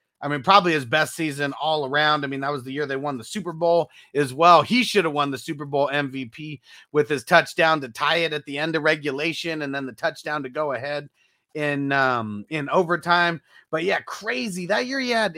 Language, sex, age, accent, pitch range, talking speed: English, male, 30-49, American, 145-190 Hz, 225 wpm